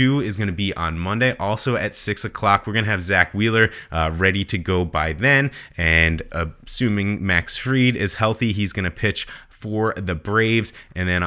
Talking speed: 195 wpm